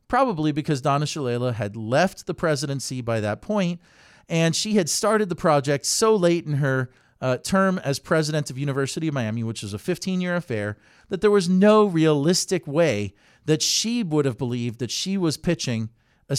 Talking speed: 185 wpm